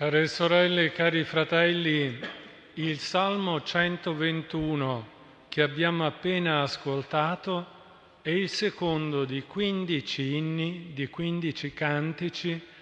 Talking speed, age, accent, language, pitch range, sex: 95 wpm, 50-69, native, Italian, 150-180 Hz, male